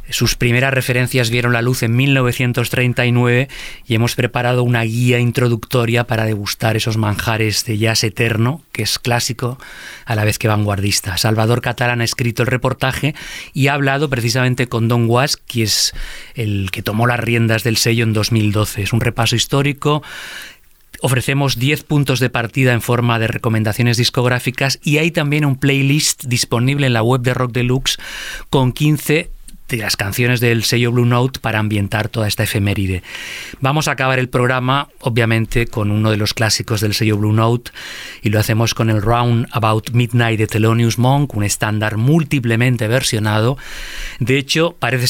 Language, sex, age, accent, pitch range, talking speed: Spanish, male, 30-49, Spanish, 115-135 Hz, 170 wpm